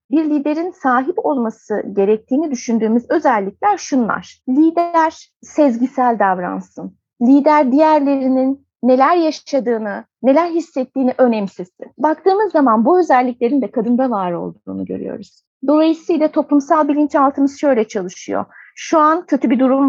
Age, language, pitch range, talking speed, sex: 30-49, Turkish, 235-305 Hz, 110 wpm, female